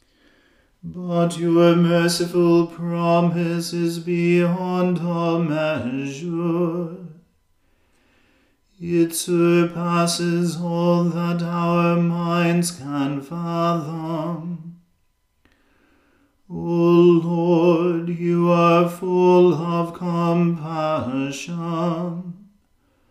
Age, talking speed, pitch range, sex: 40-59, 60 wpm, 170-175 Hz, male